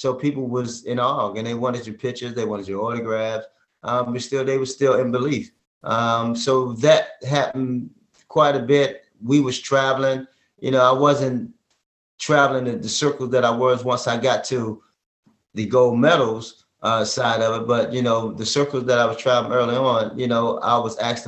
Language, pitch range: English, 110-130 Hz